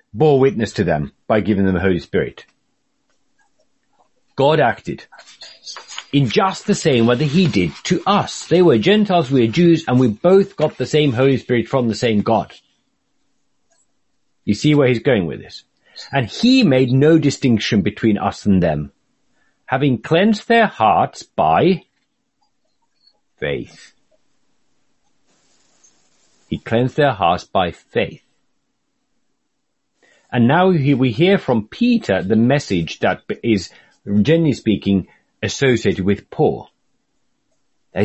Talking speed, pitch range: 130 wpm, 105-165 Hz